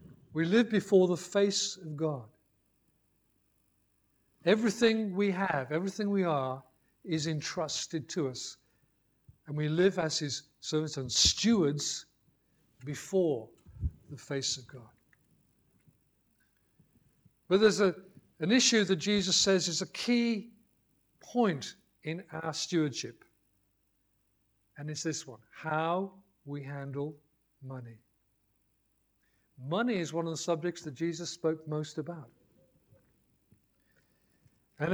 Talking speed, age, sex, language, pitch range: 110 wpm, 60-79, male, English, 125-175 Hz